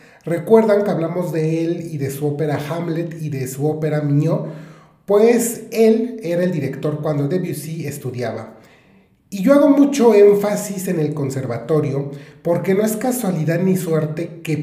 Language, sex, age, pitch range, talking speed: Spanish, male, 40-59, 150-190 Hz, 155 wpm